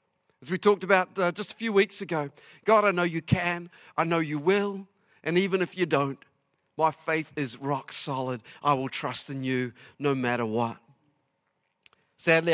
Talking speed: 180 wpm